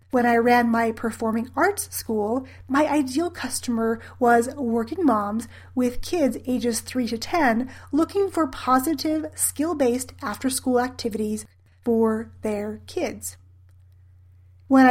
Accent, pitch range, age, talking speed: American, 225-275 Hz, 30-49, 115 wpm